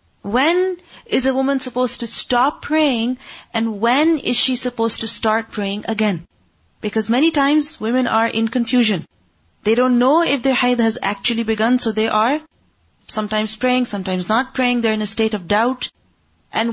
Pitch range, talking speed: 220-275 Hz, 170 wpm